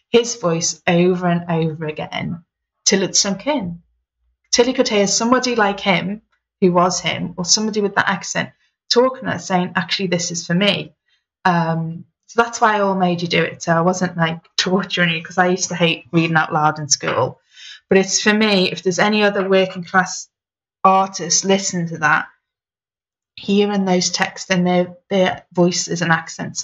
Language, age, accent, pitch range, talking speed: English, 20-39, British, 165-195 Hz, 185 wpm